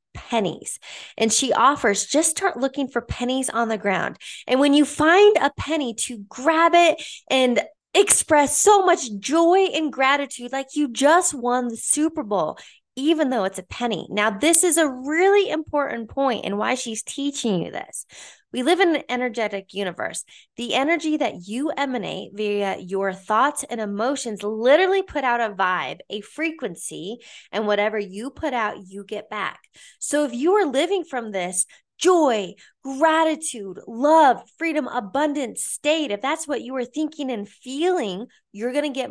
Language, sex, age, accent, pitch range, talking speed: English, female, 20-39, American, 210-305 Hz, 165 wpm